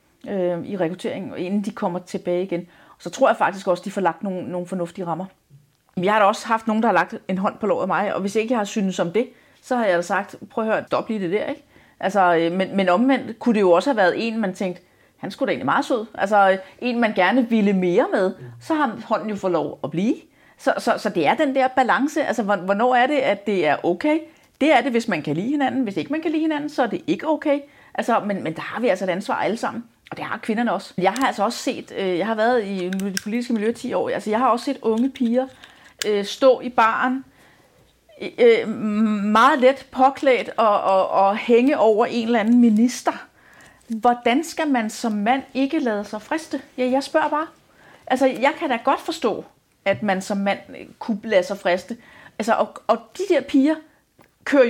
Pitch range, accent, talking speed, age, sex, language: 195-270 Hz, native, 230 wpm, 40-59, female, Danish